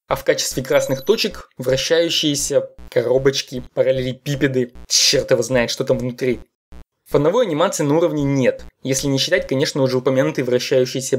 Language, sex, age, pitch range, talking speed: Russian, male, 20-39, 130-180 Hz, 145 wpm